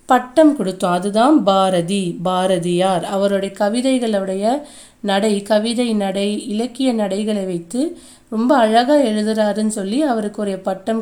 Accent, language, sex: native, Tamil, female